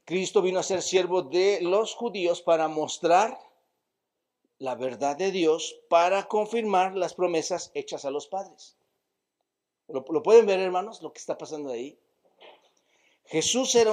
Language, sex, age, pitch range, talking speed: Spanish, male, 50-69, 155-200 Hz, 140 wpm